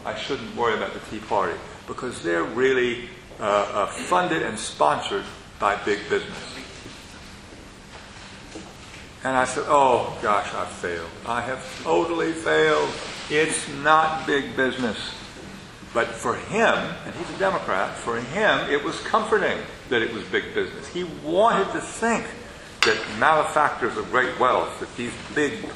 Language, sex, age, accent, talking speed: Italian, male, 50-69, American, 145 wpm